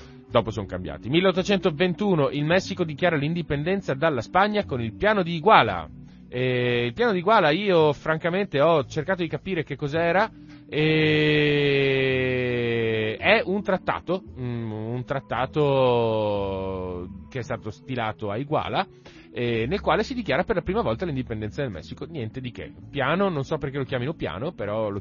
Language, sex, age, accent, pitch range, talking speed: Italian, male, 30-49, native, 110-170 Hz, 155 wpm